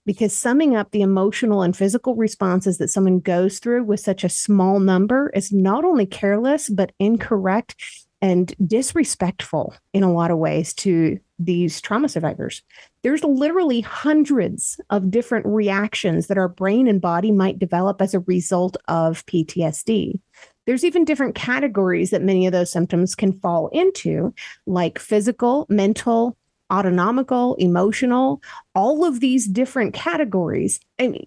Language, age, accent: English, 30-49, American